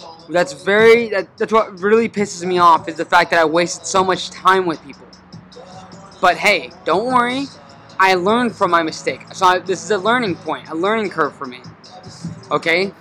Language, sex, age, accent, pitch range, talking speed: English, male, 20-39, American, 165-200 Hz, 185 wpm